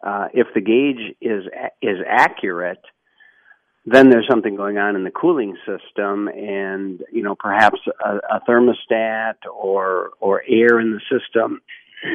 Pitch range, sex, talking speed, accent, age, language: 95-115 Hz, male, 145 wpm, American, 50-69, English